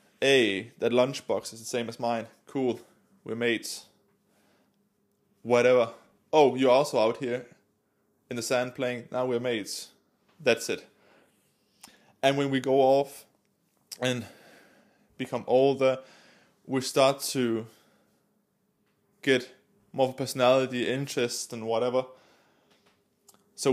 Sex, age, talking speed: male, 20-39, 110 wpm